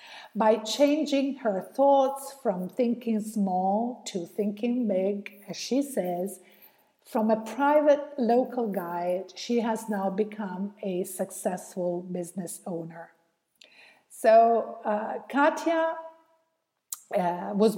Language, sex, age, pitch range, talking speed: English, female, 50-69, 195-255 Hz, 105 wpm